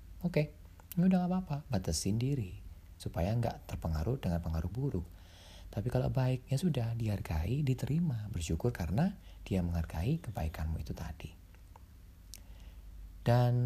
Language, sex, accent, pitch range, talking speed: Indonesian, male, native, 90-120 Hz, 125 wpm